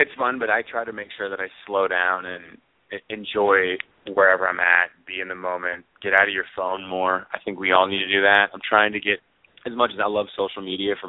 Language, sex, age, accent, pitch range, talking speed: English, male, 20-39, American, 95-110 Hz, 255 wpm